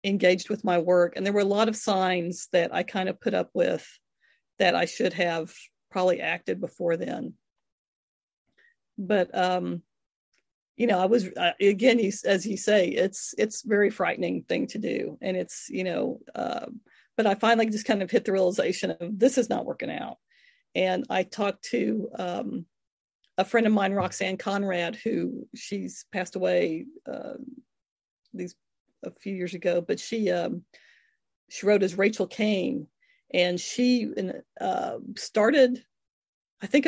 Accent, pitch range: American, 190-245 Hz